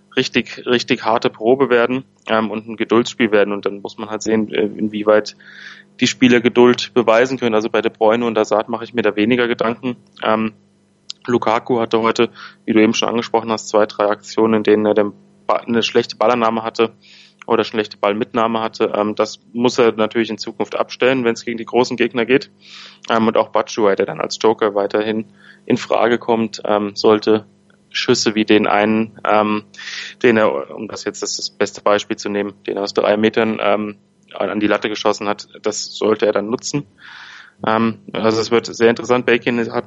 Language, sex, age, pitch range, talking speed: German, male, 30-49, 105-120 Hz, 190 wpm